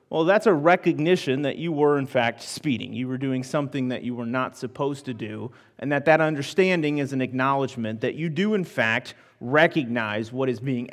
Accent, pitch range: American, 130-160 Hz